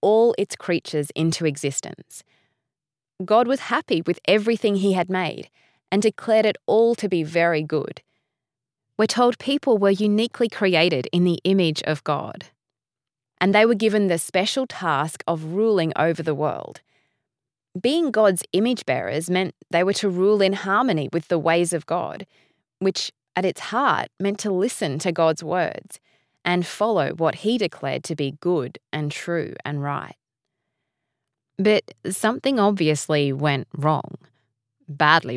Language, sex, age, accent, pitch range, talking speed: English, female, 20-39, Australian, 155-210 Hz, 150 wpm